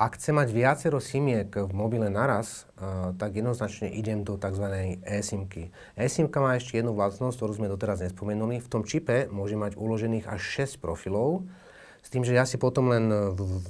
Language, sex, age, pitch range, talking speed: Slovak, male, 30-49, 95-115 Hz, 175 wpm